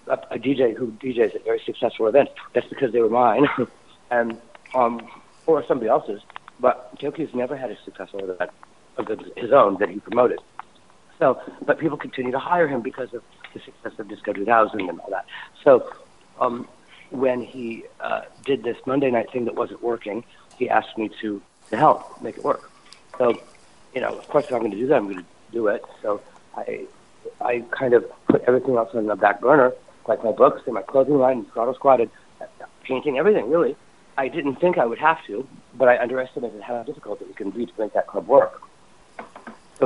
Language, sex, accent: English, male, American